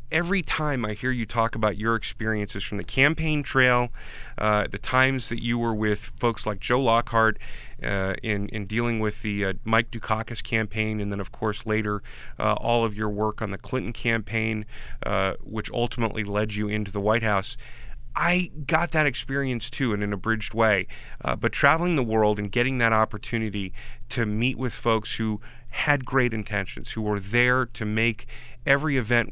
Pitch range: 105-125 Hz